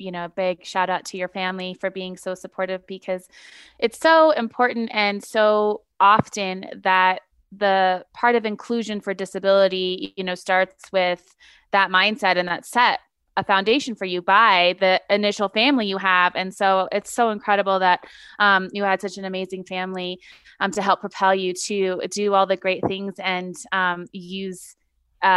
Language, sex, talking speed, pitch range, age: English, female, 175 wpm, 185-210 Hz, 20-39